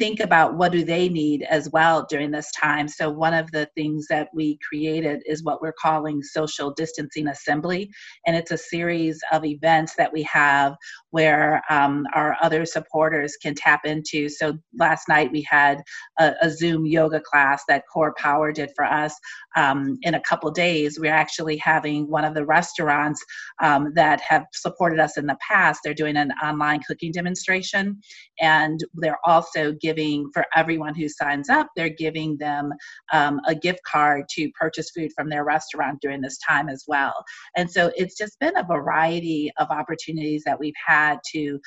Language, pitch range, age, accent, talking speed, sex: English, 150-165 Hz, 40-59, American, 180 wpm, female